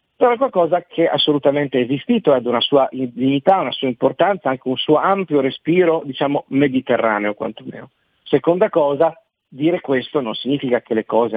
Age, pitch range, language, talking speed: 40-59, 115-145 Hz, Italian, 170 wpm